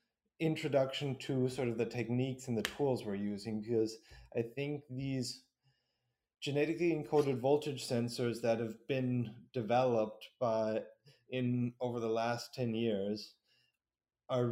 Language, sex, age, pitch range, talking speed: English, male, 20-39, 115-135 Hz, 130 wpm